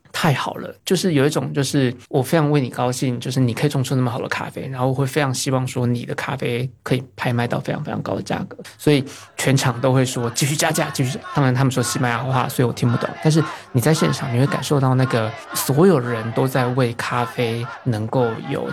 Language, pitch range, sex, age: Chinese, 125-150 Hz, male, 20-39